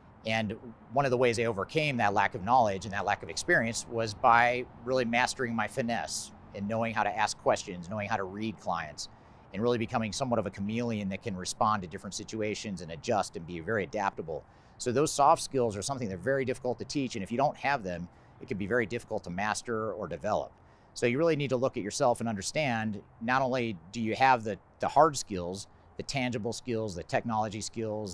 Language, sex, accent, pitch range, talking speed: English, male, American, 100-125 Hz, 220 wpm